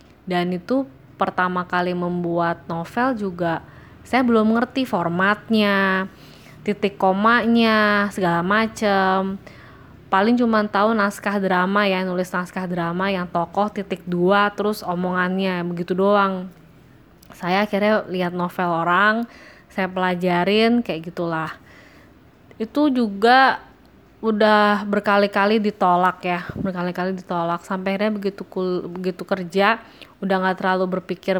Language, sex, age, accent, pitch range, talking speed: Indonesian, female, 20-39, native, 175-210 Hz, 115 wpm